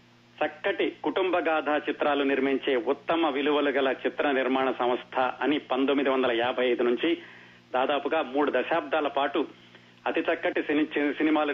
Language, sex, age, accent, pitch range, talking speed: Telugu, male, 30-49, native, 130-170 Hz, 110 wpm